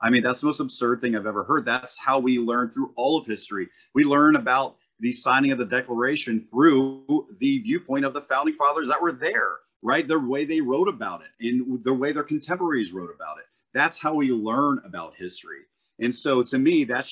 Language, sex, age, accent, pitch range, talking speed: English, male, 40-59, American, 120-180 Hz, 215 wpm